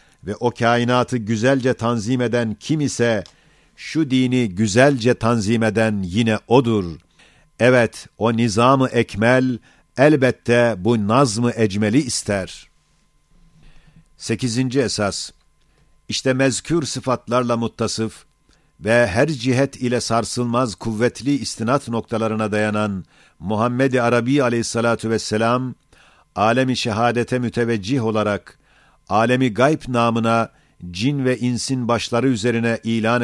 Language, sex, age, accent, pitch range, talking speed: Turkish, male, 50-69, native, 110-130 Hz, 100 wpm